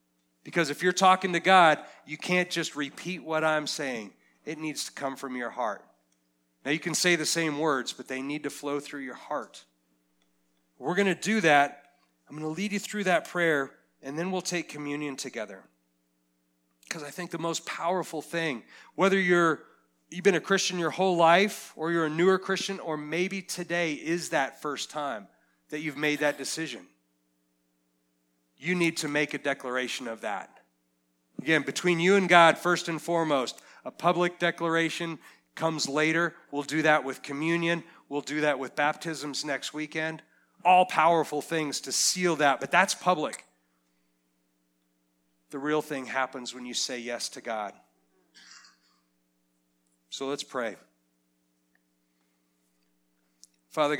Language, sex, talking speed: English, male, 160 wpm